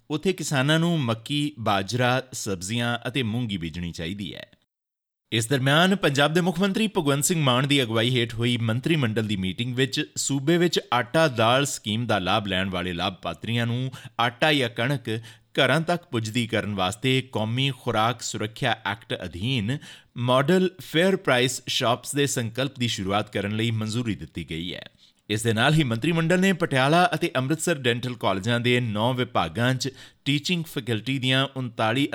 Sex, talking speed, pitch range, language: male, 135 wpm, 110-145 Hz, Punjabi